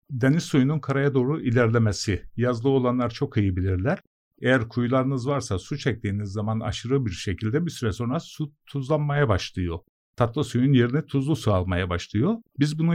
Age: 50-69